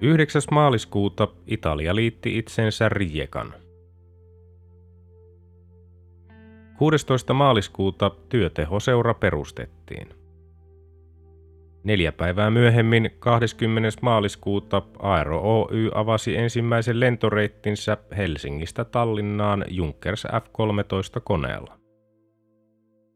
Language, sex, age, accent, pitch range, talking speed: Finnish, male, 30-49, native, 90-110 Hz, 65 wpm